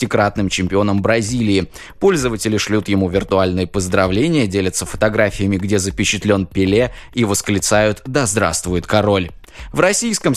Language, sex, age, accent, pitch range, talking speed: Russian, male, 20-39, native, 100-140 Hz, 110 wpm